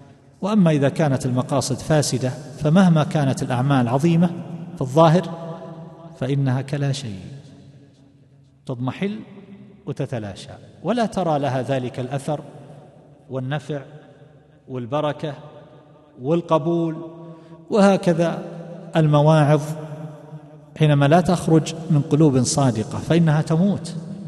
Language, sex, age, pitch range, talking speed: Arabic, male, 40-59, 125-160 Hz, 85 wpm